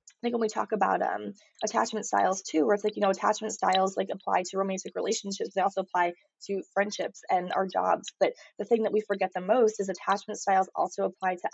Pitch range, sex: 190-220 Hz, female